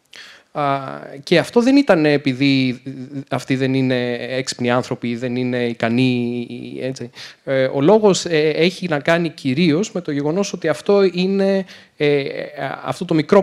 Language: Greek